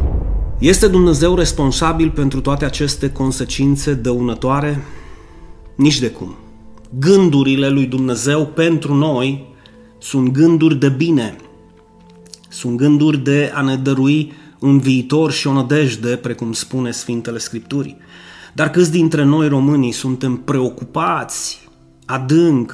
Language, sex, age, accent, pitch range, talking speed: Romanian, male, 30-49, native, 120-155 Hz, 115 wpm